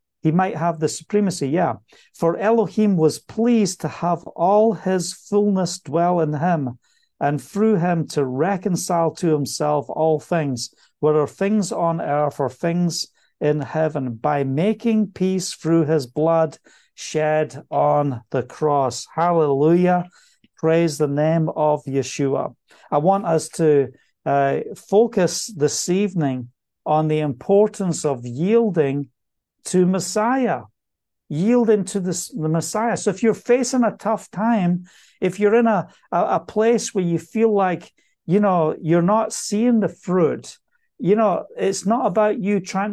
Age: 50-69